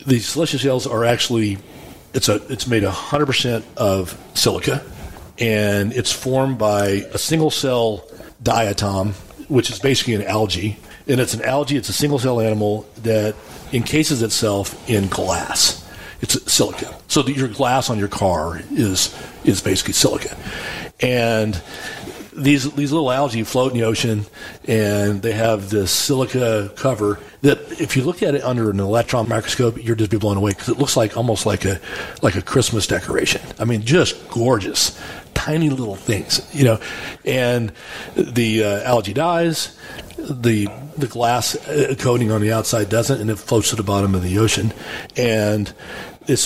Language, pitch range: English, 105-130 Hz